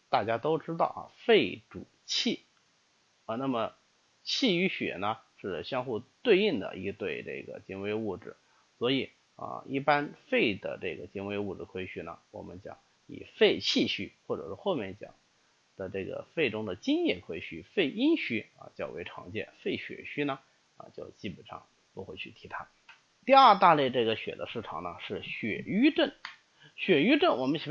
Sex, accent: male, native